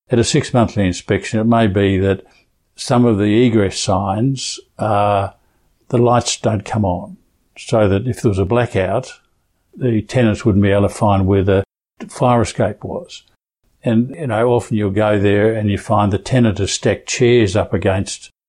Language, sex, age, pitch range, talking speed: English, male, 60-79, 100-120 Hz, 180 wpm